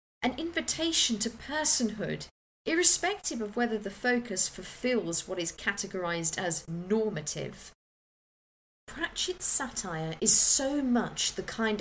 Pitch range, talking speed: 180-240 Hz, 110 wpm